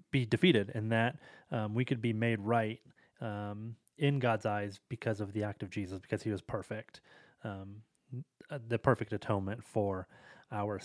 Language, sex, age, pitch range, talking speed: English, male, 30-49, 110-140 Hz, 165 wpm